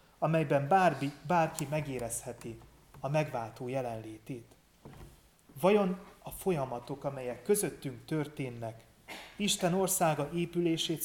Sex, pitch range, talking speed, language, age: male, 120-155 Hz, 80 wpm, Hungarian, 30-49